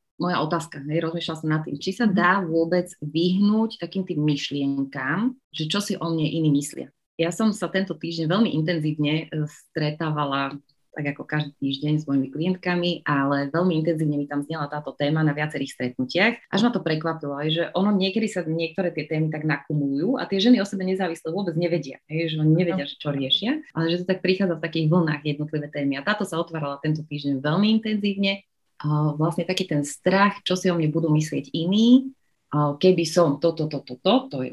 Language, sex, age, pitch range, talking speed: Slovak, female, 30-49, 145-175 Hz, 200 wpm